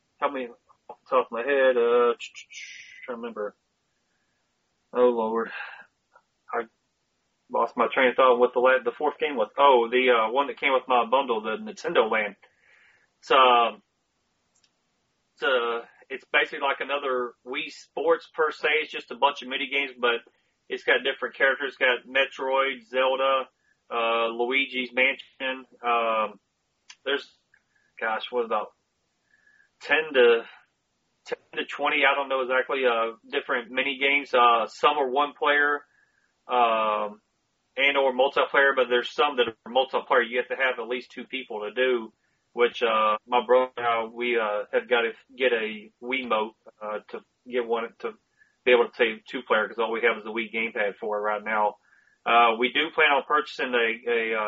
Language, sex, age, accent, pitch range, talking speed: English, male, 30-49, American, 115-140 Hz, 175 wpm